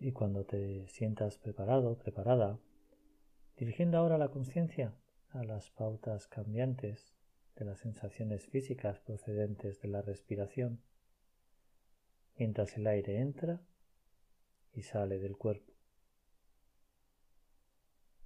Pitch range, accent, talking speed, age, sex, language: 95-120 Hz, Spanish, 100 wpm, 40-59, male, Spanish